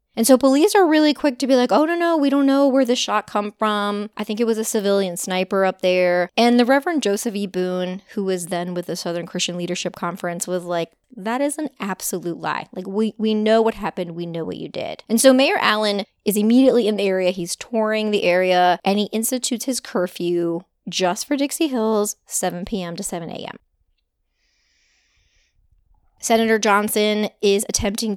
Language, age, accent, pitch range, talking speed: English, 20-39, American, 180-235 Hz, 200 wpm